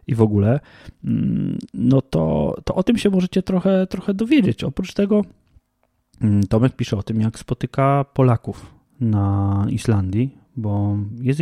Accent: native